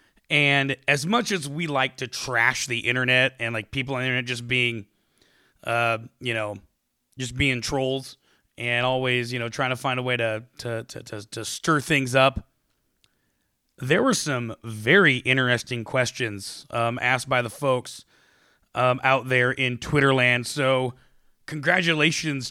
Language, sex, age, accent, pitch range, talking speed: English, male, 30-49, American, 120-145 Hz, 155 wpm